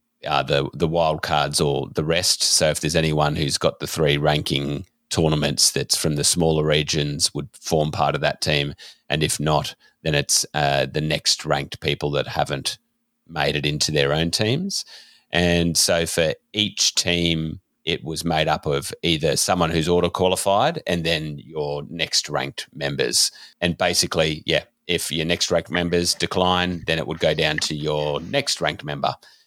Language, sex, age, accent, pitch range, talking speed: English, male, 30-49, Australian, 75-95 Hz, 175 wpm